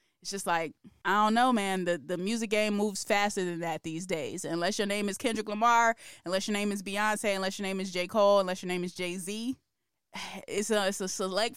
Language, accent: English, American